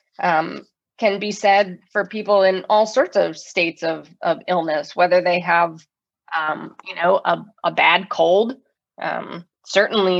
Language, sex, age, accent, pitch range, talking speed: English, female, 20-39, American, 175-205 Hz, 155 wpm